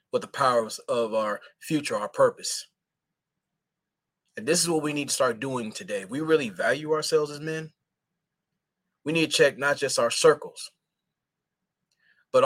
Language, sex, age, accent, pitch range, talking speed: English, male, 30-49, American, 130-175 Hz, 155 wpm